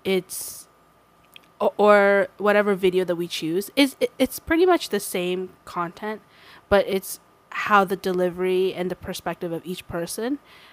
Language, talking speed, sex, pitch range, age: English, 150 wpm, female, 175-215 Hz, 20-39